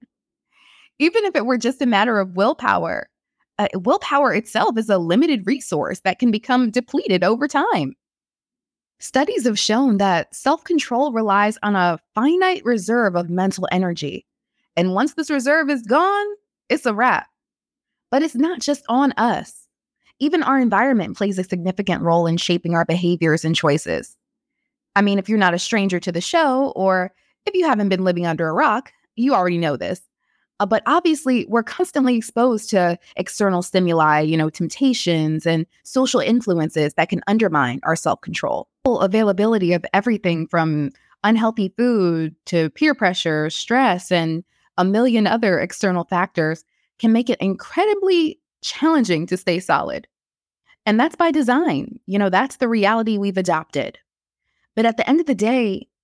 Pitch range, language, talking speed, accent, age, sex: 180-265 Hz, English, 160 wpm, American, 20-39, female